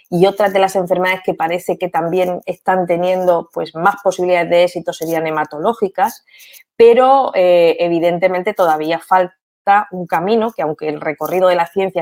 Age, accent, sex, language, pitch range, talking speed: 20-39, Spanish, female, Spanish, 165-200 Hz, 155 wpm